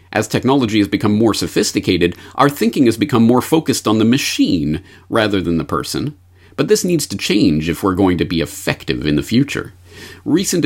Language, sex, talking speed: English, male, 190 wpm